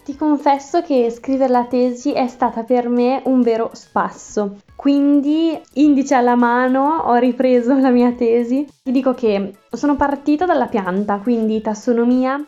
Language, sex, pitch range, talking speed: Italian, female, 220-260 Hz, 150 wpm